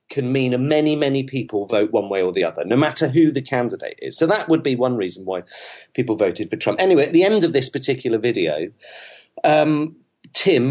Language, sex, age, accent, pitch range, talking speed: English, male, 40-59, British, 125-165 Hz, 215 wpm